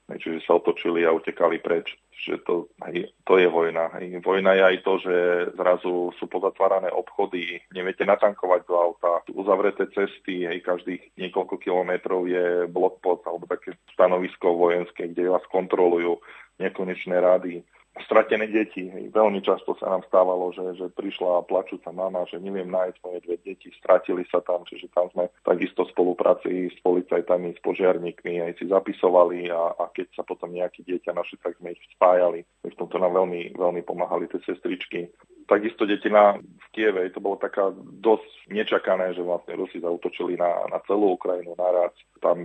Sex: male